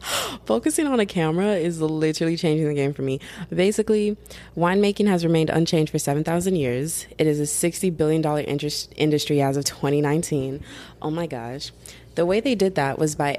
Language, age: English, 20-39